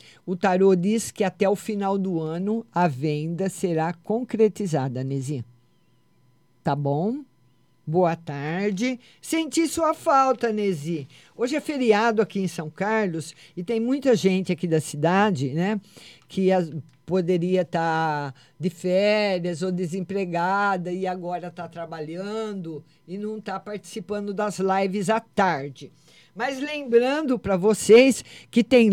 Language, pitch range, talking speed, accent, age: Portuguese, 160-225 Hz, 130 wpm, Brazilian, 50-69